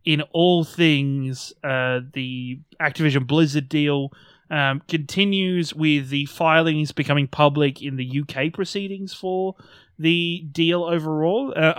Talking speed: 120 wpm